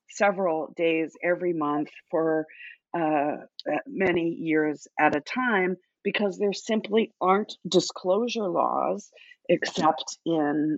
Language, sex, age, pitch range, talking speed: English, female, 40-59, 160-210 Hz, 105 wpm